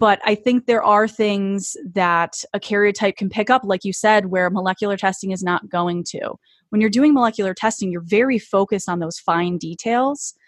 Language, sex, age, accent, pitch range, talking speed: English, female, 20-39, American, 180-210 Hz, 195 wpm